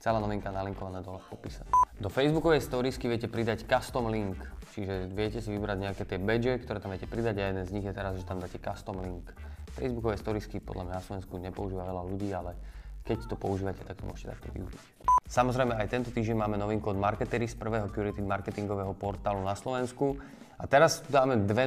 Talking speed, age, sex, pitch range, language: 195 wpm, 20-39, male, 100-120 Hz, Slovak